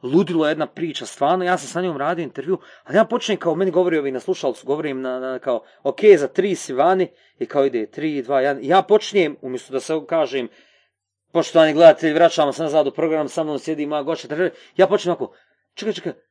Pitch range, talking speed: 165-210 Hz, 215 wpm